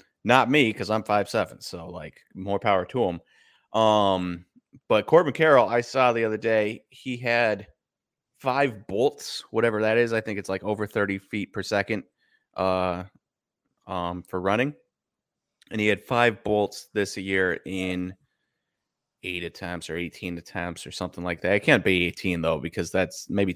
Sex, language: male, English